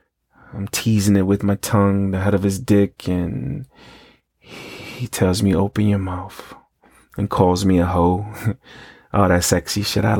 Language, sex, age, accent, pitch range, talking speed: English, male, 30-49, American, 95-105 Hz, 165 wpm